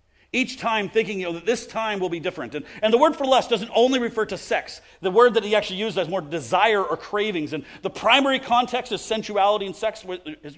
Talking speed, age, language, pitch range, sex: 240 wpm, 40-59, English, 165-240 Hz, male